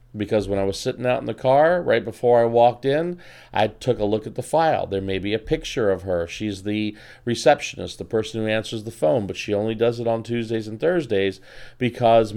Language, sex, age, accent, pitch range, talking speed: English, male, 40-59, American, 105-130 Hz, 230 wpm